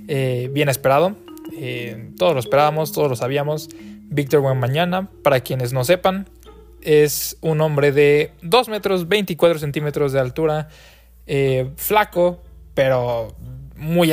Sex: male